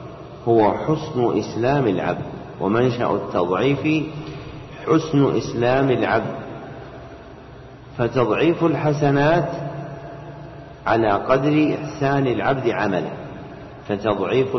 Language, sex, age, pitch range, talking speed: Arabic, male, 50-69, 115-145 Hz, 70 wpm